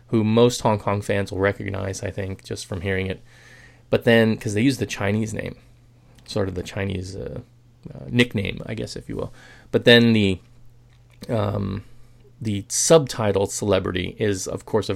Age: 30-49